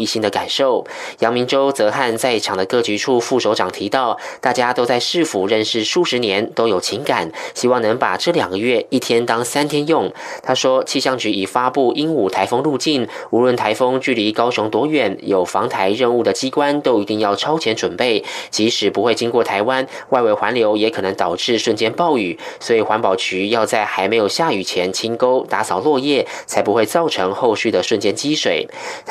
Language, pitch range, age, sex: German, 110-135 Hz, 20-39, male